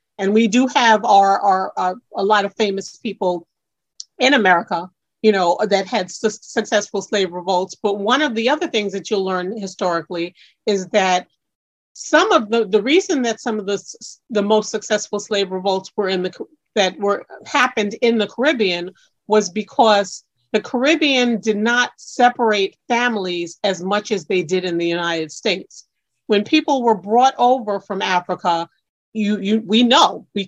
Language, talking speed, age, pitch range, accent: English, 170 wpm, 40-59, 185-230 Hz, American